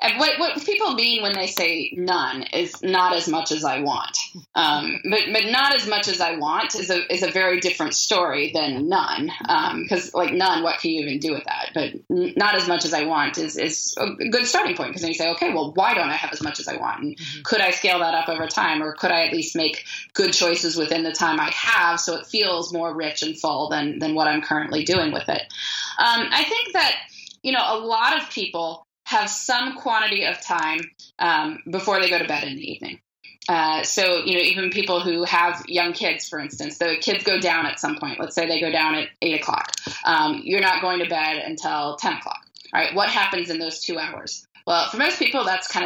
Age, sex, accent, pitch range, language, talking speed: 20-39, female, American, 165-220 Hz, English, 240 wpm